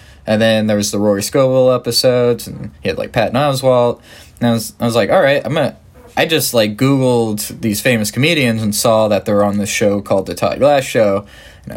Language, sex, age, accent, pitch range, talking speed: English, male, 20-39, American, 105-150 Hz, 230 wpm